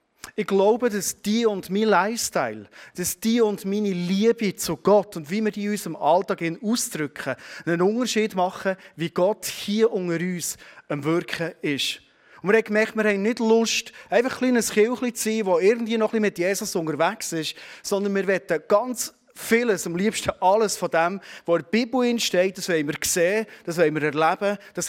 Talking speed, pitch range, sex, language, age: 195 wpm, 145-200 Hz, male, German, 30-49